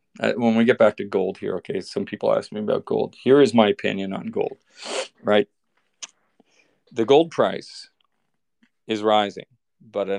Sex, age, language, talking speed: male, 40-59, English, 165 wpm